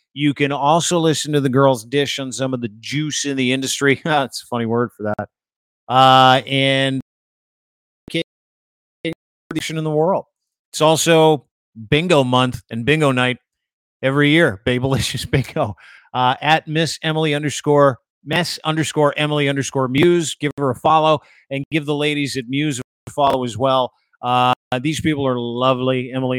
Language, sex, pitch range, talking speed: English, male, 130-150 Hz, 155 wpm